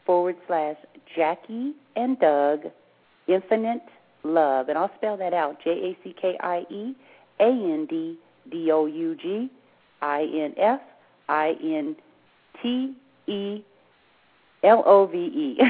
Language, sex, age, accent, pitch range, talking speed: English, female, 40-59, American, 155-205 Hz, 50 wpm